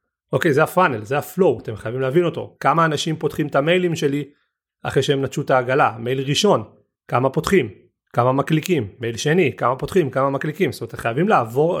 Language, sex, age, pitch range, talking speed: Hebrew, male, 30-49, 125-165 Hz, 180 wpm